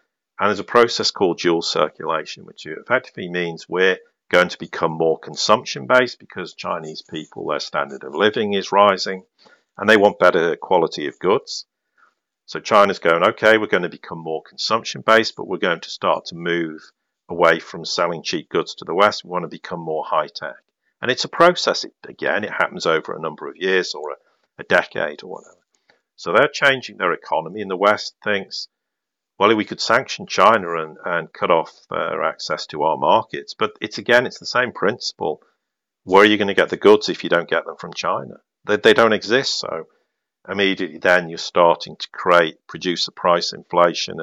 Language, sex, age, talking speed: English, male, 50-69, 195 wpm